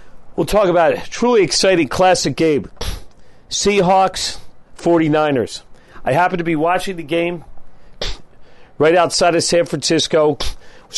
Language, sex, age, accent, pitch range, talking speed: English, male, 40-59, American, 150-180 Hz, 125 wpm